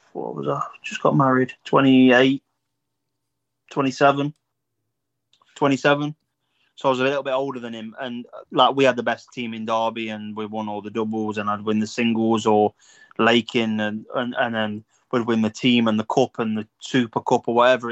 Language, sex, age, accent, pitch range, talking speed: English, male, 20-39, British, 115-135 Hz, 190 wpm